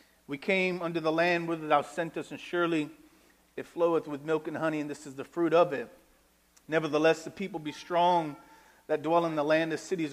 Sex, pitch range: male, 145-175 Hz